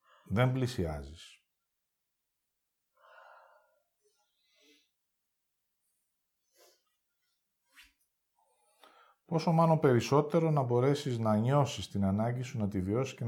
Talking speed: 70 wpm